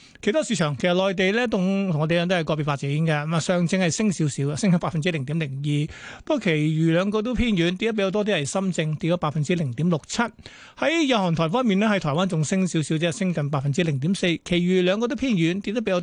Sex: male